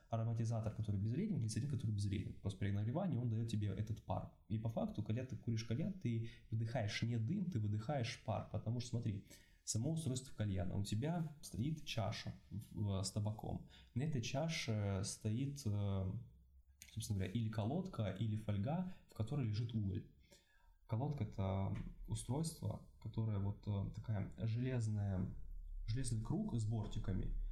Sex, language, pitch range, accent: male, Russian, 100-120 Hz, native